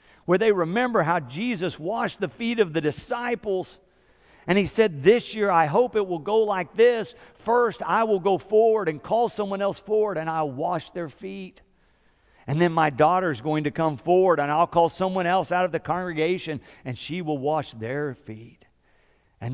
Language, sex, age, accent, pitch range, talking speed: English, male, 50-69, American, 105-175 Hz, 195 wpm